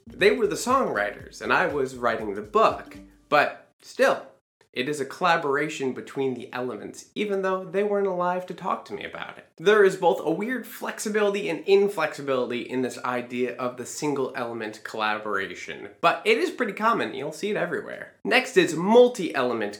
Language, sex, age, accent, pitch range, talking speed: English, male, 20-39, American, 125-200 Hz, 175 wpm